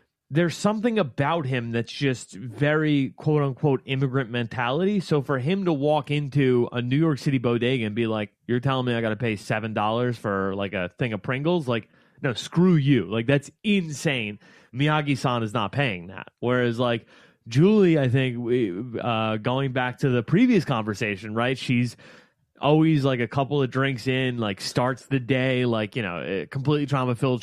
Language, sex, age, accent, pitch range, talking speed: English, male, 30-49, American, 115-140 Hz, 180 wpm